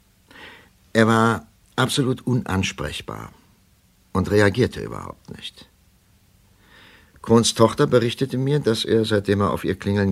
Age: 60-79